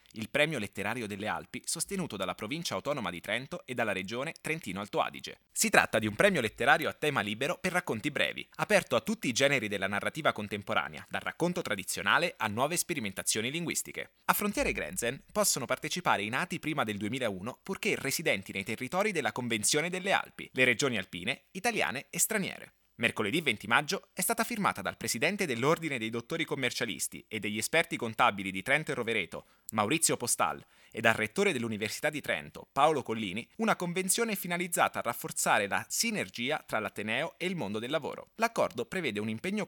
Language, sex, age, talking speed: Italian, male, 20-39, 175 wpm